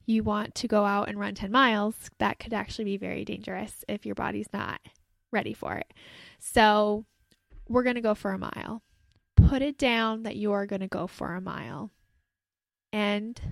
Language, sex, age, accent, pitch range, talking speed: English, female, 10-29, American, 205-250 Hz, 185 wpm